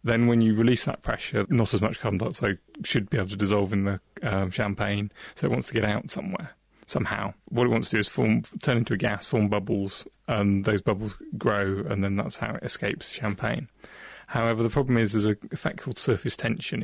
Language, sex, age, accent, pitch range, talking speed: English, male, 30-49, British, 105-115 Hz, 220 wpm